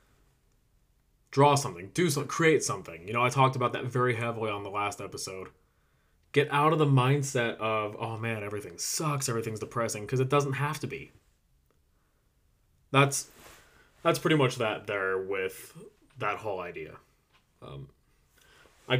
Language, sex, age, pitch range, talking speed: English, male, 20-39, 105-135 Hz, 150 wpm